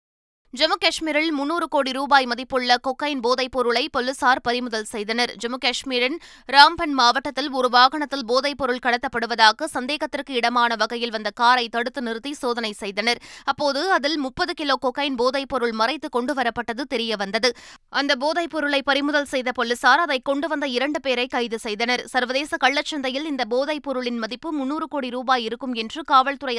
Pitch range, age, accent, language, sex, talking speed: 240-285 Hz, 20-39, native, Tamil, female, 140 wpm